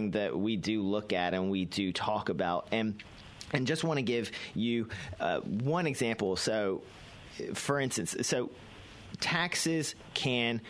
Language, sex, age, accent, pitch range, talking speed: English, male, 40-59, American, 110-140 Hz, 145 wpm